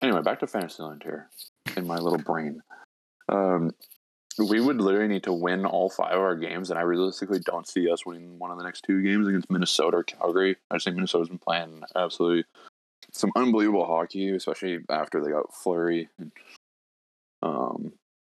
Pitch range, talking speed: 85-95 Hz, 180 wpm